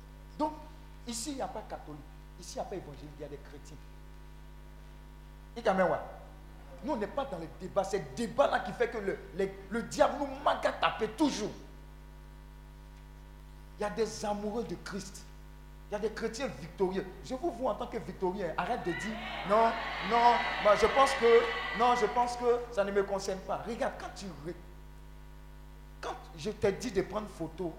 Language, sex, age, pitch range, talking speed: French, male, 50-69, 140-220 Hz, 190 wpm